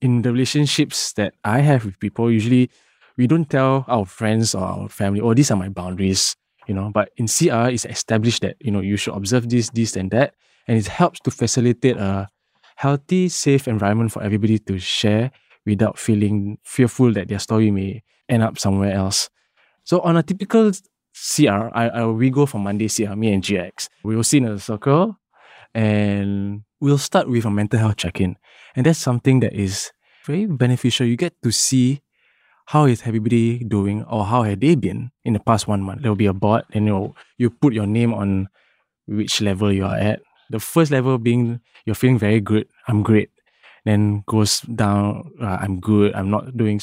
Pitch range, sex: 105-125 Hz, male